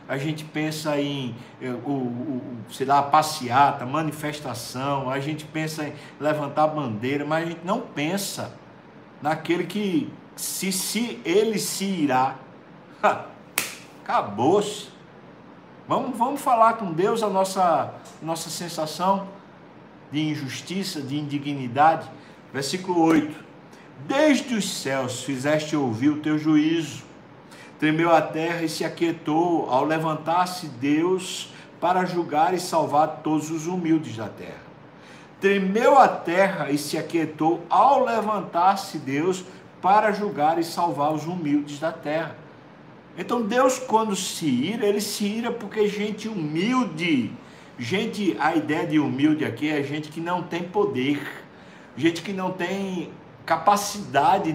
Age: 60-79